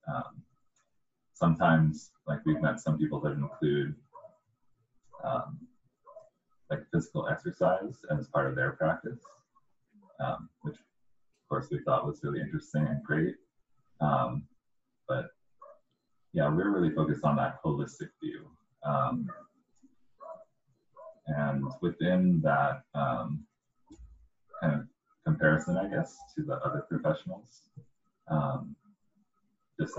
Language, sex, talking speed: English, male, 110 wpm